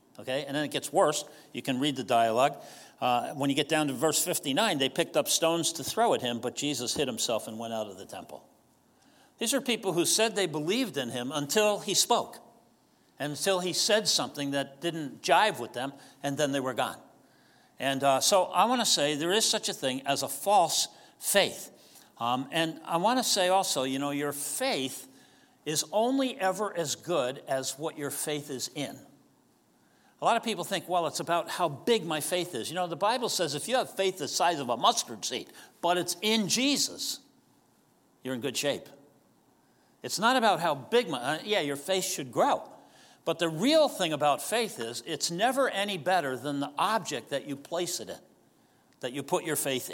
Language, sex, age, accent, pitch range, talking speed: English, male, 60-79, American, 140-190 Hz, 210 wpm